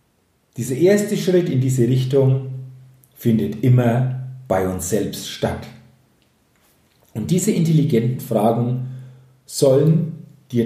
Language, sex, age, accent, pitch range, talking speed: German, male, 40-59, German, 120-175 Hz, 100 wpm